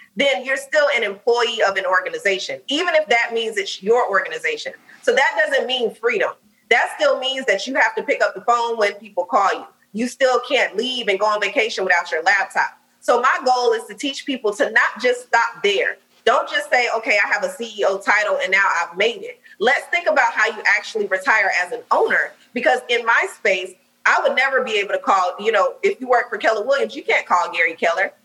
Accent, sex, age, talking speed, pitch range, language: American, female, 20-39, 225 wpm, 205-285 Hz, English